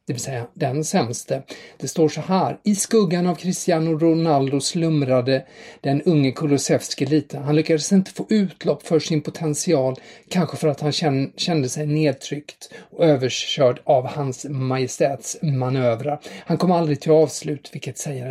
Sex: male